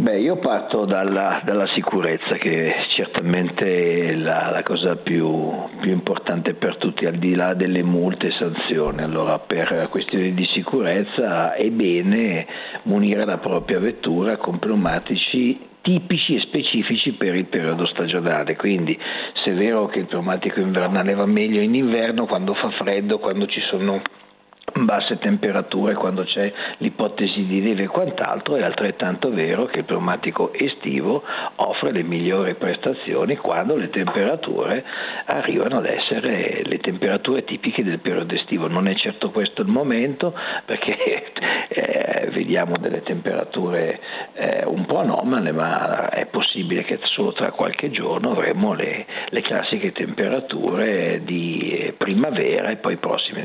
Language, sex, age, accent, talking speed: Italian, male, 50-69, native, 145 wpm